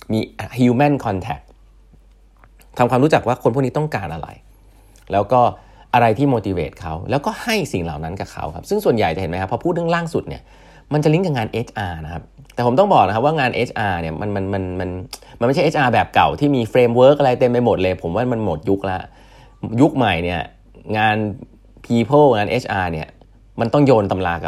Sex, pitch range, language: male, 95-125 Hz, Thai